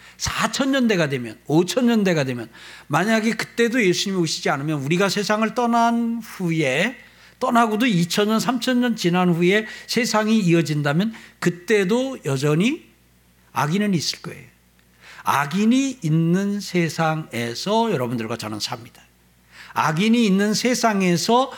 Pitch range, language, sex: 140-220 Hz, Korean, male